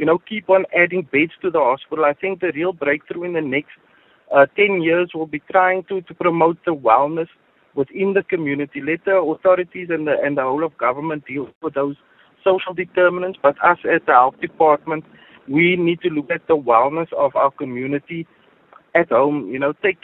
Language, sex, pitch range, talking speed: English, male, 135-170 Hz, 200 wpm